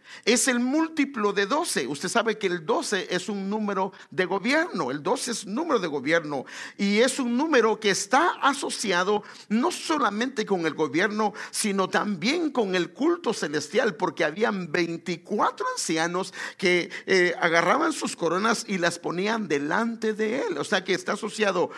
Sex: male